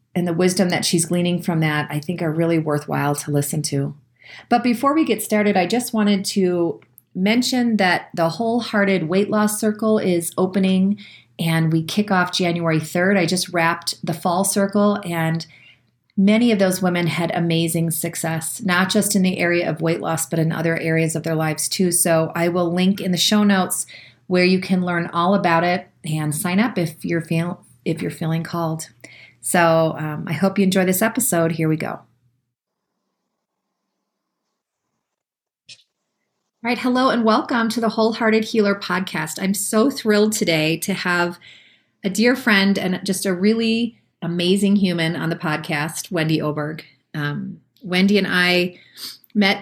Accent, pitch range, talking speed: American, 160-200 Hz, 170 wpm